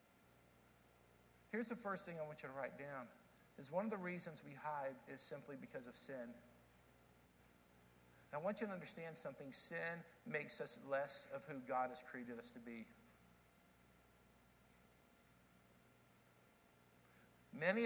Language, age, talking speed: English, 50-69, 140 wpm